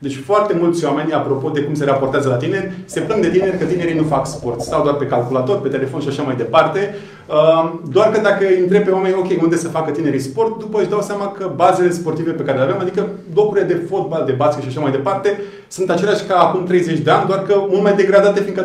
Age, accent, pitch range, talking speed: 30-49, native, 140-185 Hz, 245 wpm